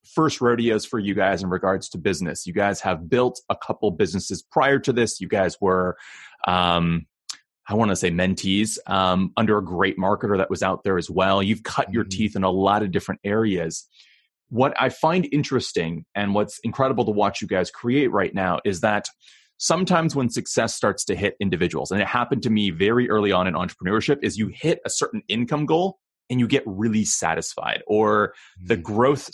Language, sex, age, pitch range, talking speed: English, male, 30-49, 95-120 Hz, 200 wpm